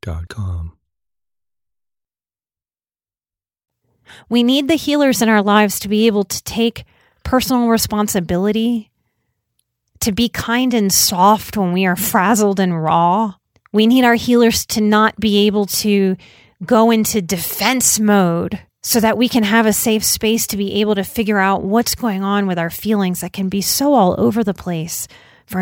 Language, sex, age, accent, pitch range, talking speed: English, female, 30-49, American, 190-240 Hz, 155 wpm